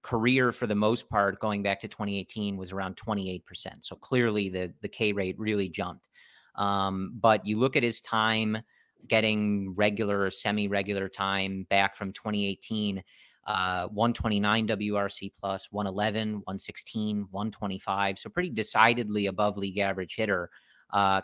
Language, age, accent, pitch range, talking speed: English, 30-49, American, 100-110 Hz, 140 wpm